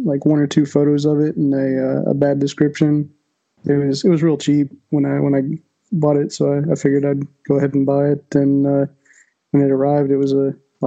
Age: 20-39